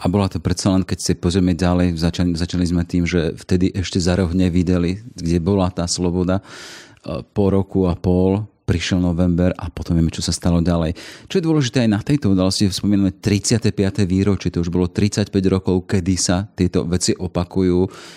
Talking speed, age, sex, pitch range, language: 180 wpm, 40-59, male, 90-105 Hz, Slovak